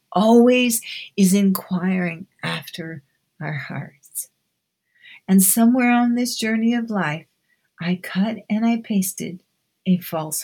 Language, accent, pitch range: English, American, 175-230 Hz